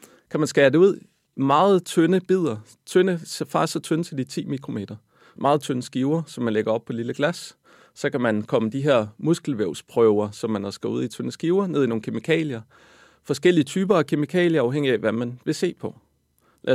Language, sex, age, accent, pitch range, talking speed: Danish, male, 40-59, native, 115-155 Hz, 210 wpm